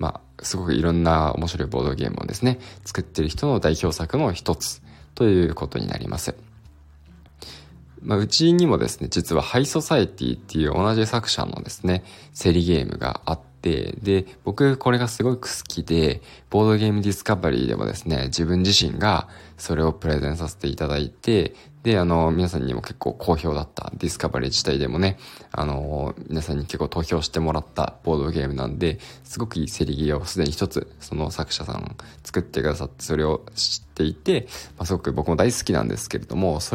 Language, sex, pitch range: Japanese, male, 80-115 Hz